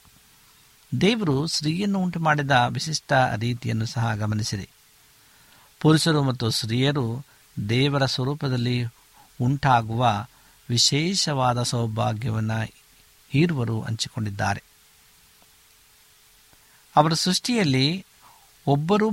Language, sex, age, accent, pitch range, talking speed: Kannada, male, 60-79, native, 115-150 Hz, 65 wpm